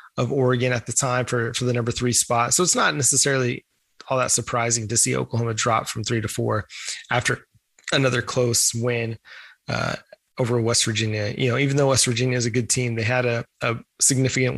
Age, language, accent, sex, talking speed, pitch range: 20-39, English, American, male, 200 wpm, 115-130 Hz